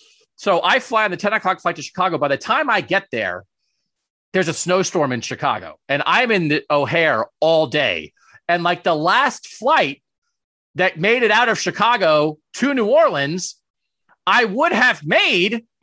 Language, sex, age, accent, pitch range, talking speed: English, male, 30-49, American, 150-230 Hz, 175 wpm